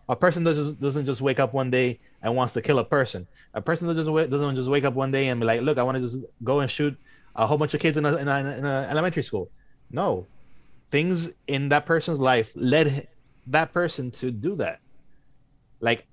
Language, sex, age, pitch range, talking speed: English, male, 20-39, 125-150 Hz, 210 wpm